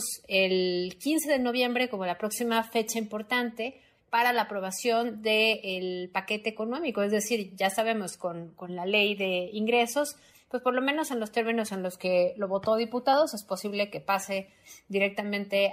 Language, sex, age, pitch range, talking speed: Spanish, female, 30-49, 185-230 Hz, 165 wpm